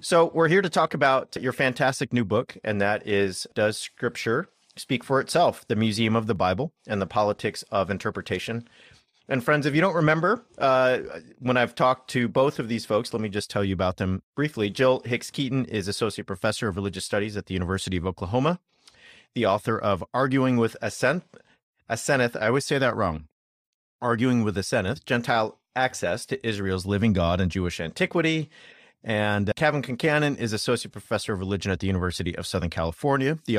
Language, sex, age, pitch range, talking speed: English, male, 40-59, 100-135 Hz, 185 wpm